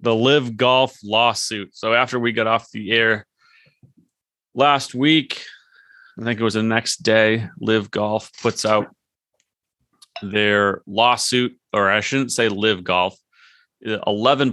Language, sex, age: English, male, 30-49